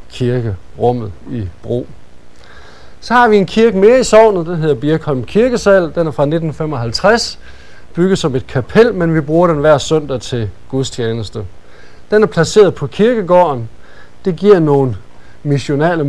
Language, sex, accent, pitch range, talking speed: Danish, male, native, 115-175 Hz, 155 wpm